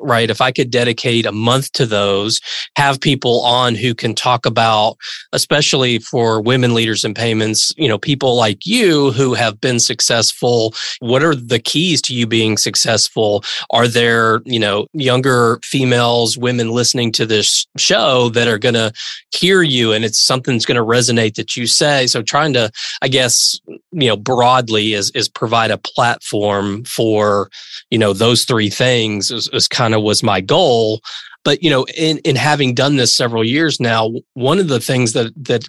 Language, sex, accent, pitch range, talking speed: English, male, American, 110-135 Hz, 175 wpm